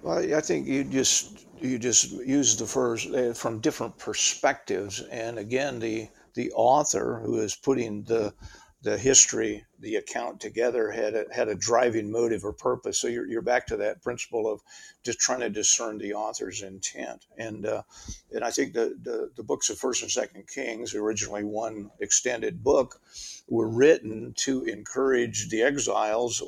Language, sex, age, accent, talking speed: English, male, 50-69, American, 170 wpm